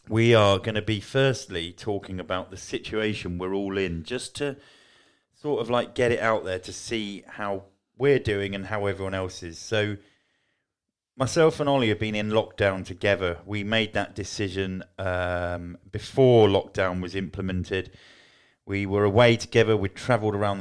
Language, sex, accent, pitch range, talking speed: English, male, British, 90-110 Hz, 165 wpm